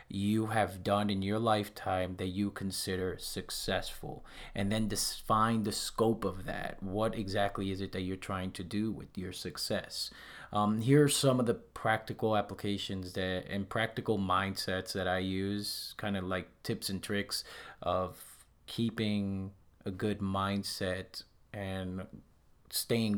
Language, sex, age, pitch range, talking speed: English, male, 30-49, 95-105 Hz, 150 wpm